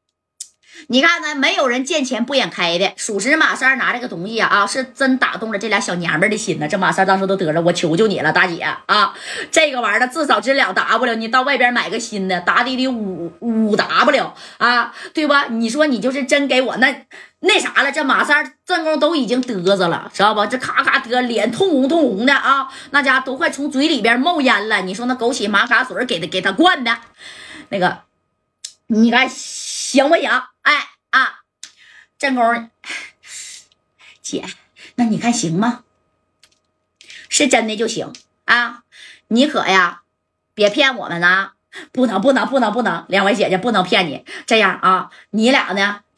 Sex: female